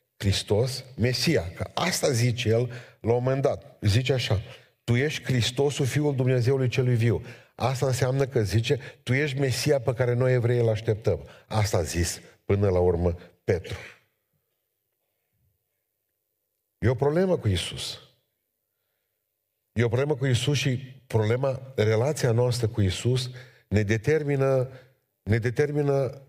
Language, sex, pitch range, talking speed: Romanian, male, 115-140 Hz, 135 wpm